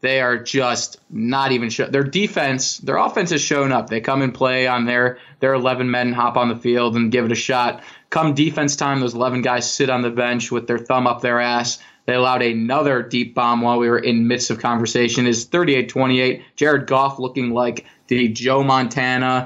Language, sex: English, male